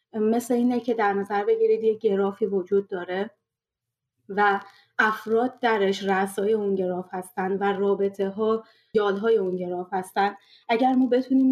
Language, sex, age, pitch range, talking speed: Persian, female, 30-49, 190-225 Hz, 145 wpm